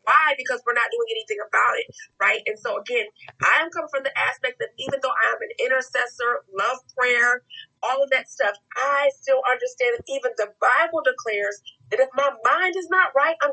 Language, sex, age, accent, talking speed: English, female, 30-49, American, 200 wpm